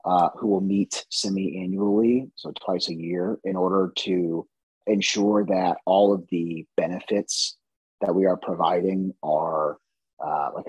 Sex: male